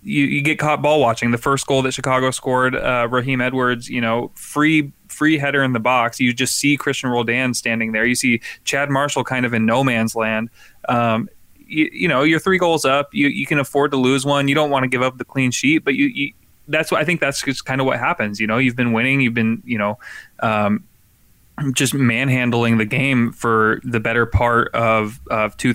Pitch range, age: 110-130 Hz, 20-39